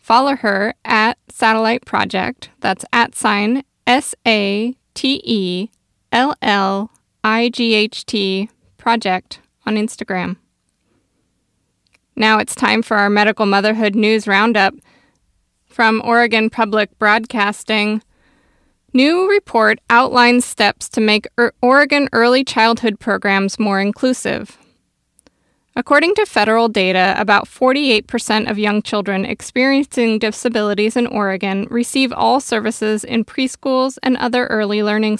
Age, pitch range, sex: 20-39, 210-245 Hz, female